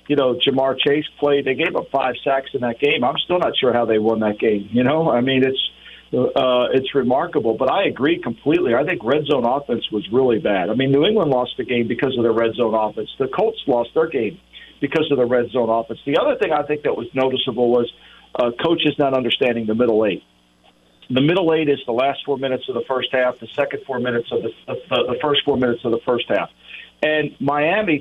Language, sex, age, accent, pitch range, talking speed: English, male, 50-69, American, 125-150 Hz, 240 wpm